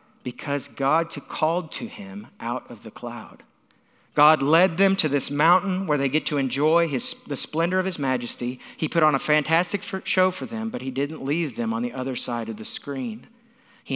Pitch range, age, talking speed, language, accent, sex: 140-195 Hz, 50-69, 200 wpm, English, American, male